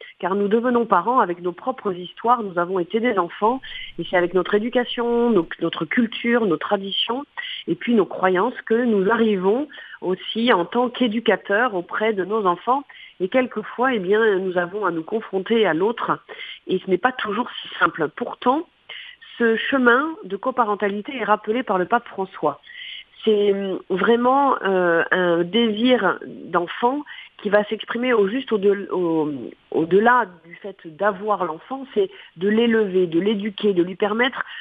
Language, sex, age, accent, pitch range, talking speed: French, female, 40-59, French, 180-235 Hz, 155 wpm